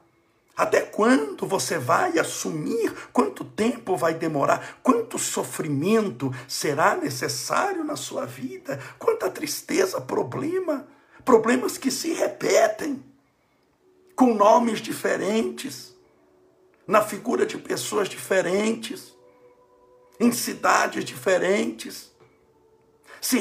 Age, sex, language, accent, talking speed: 60-79, male, Portuguese, Brazilian, 90 wpm